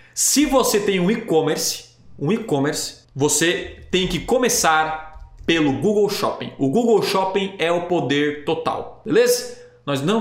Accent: Brazilian